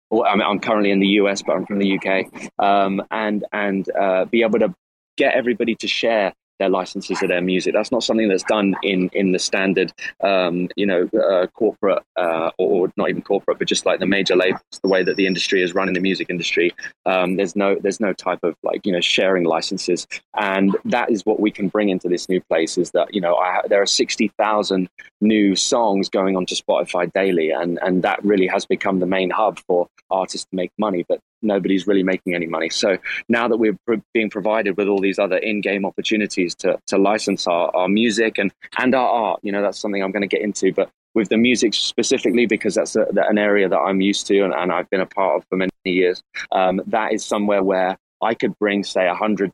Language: English